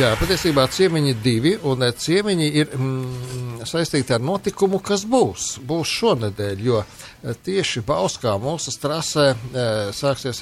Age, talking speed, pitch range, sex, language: 60-79, 120 wpm, 105-135 Hz, male, English